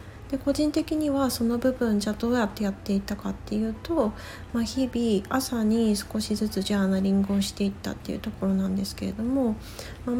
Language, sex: Japanese, female